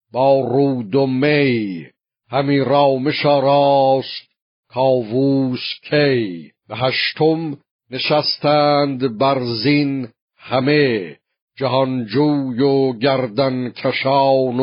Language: Persian